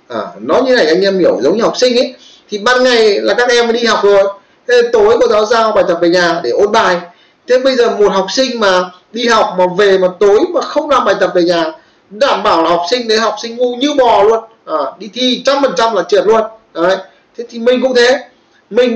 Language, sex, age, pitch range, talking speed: Vietnamese, male, 20-39, 180-255 Hz, 255 wpm